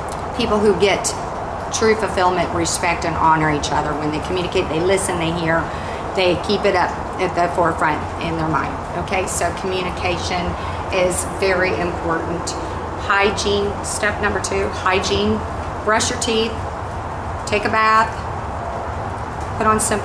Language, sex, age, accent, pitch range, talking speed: English, female, 40-59, American, 175-230 Hz, 140 wpm